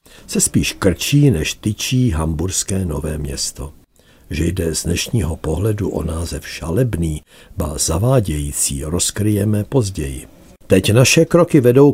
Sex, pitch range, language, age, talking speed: male, 80-115 Hz, Czech, 60-79, 120 wpm